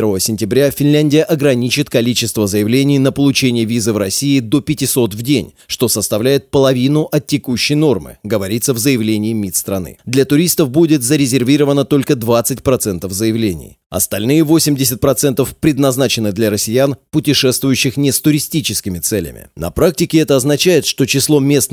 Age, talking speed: 30-49, 135 wpm